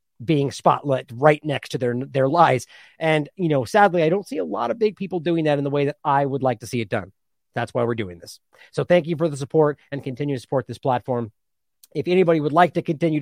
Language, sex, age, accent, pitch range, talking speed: English, male, 30-49, American, 125-155 Hz, 255 wpm